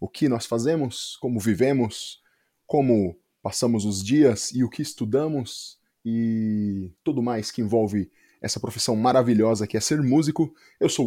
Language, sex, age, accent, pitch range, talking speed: Portuguese, male, 20-39, Brazilian, 115-140 Hz, 150 wpm